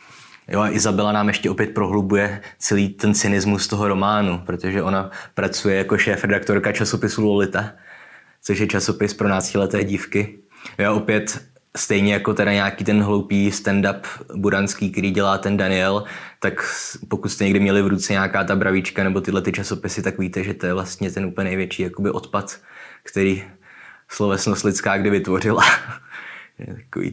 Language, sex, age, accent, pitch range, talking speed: Czech, male, 20-39, native, 95-105 Hz, 155 wpm